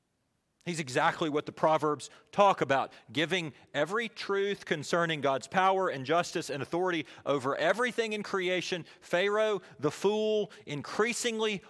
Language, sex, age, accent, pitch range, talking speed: English, male, 40-59, American, 125-185 Hz, 130 wpm